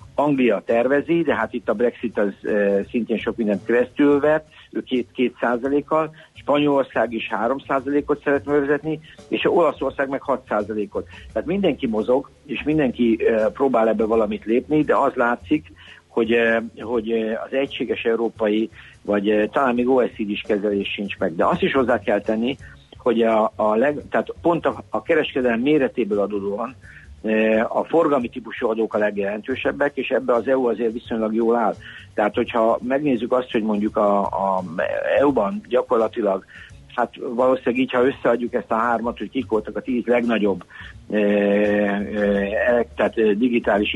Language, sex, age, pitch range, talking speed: Hungarian, male, 60-79, 105-130 Hz, 150 wpm